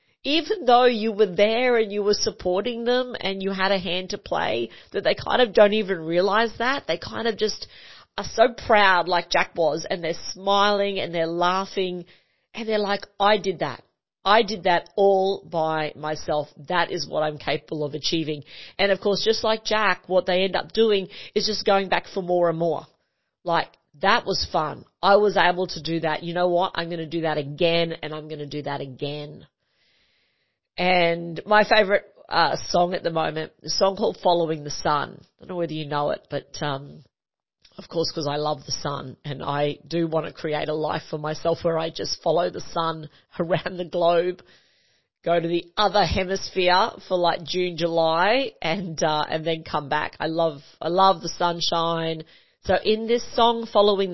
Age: 40-59